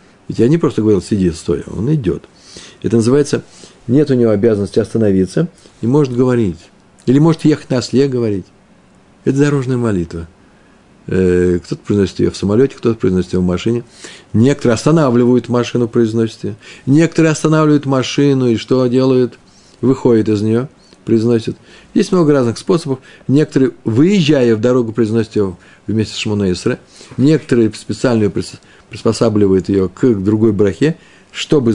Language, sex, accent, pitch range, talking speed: Russian, male, native, 100-135 Hz, 140 wpm